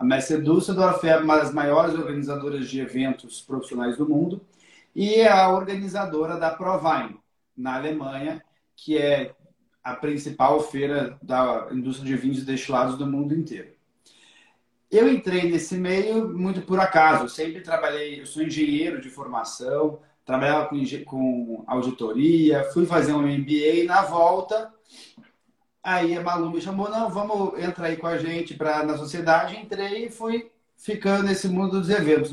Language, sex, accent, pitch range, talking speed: Portuguese, male, Brazilian, 140-185 Hz, 150 wpm